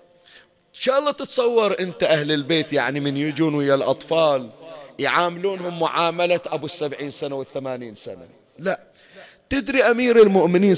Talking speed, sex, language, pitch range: 120 wpm, male, Arabic, 145-195 Hz